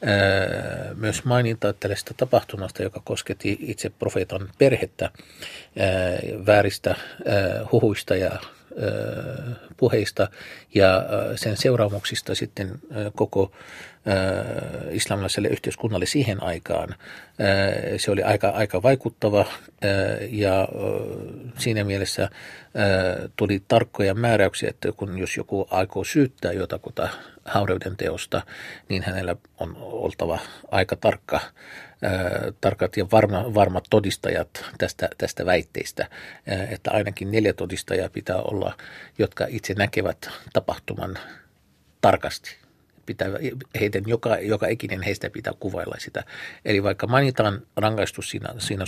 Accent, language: native, Finnish